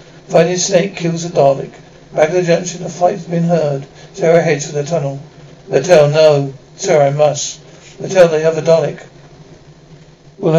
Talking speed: 160 wpm